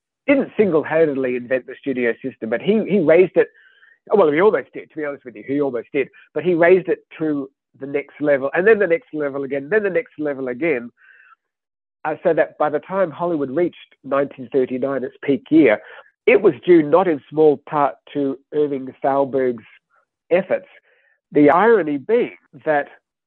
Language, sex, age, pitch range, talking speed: English, male, 50-69, 130-160 Hz, 180 wpm